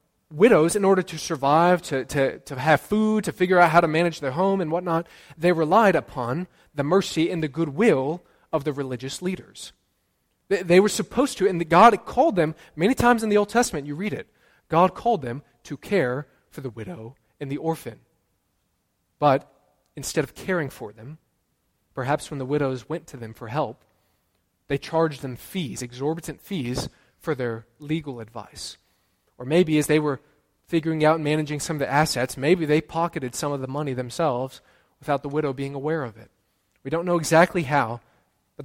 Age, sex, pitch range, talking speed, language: 20-39, male, 125-170 Hz, 185 wpm, English